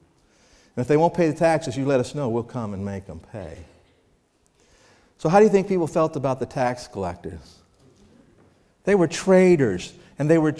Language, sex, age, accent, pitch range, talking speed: English, male, 50-69, American, 130-185 Hz, 195 wpm